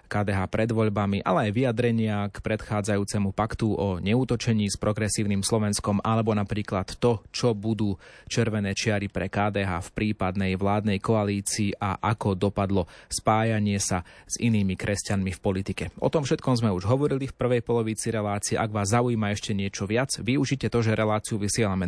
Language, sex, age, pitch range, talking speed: Slovak, male, 30-49, 100-115 Hz, 160 wpm